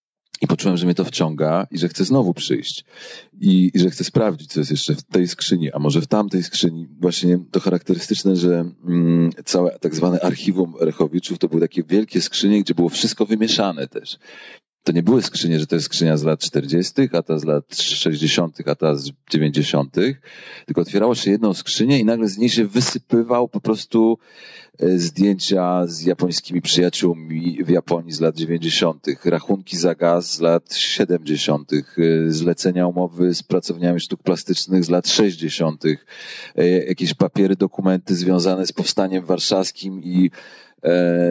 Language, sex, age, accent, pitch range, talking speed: Polish, male, 40-59, native, 85-105 Hz, 165 wpm